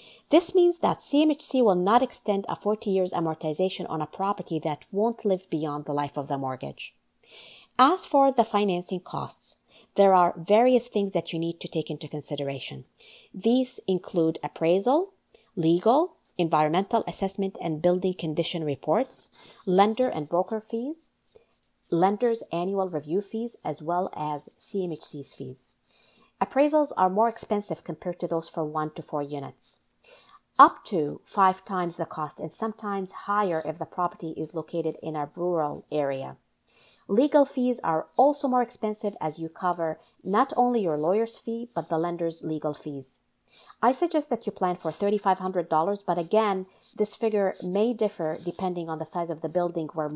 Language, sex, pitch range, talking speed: English, female, 160-220 Hz, 160 wpm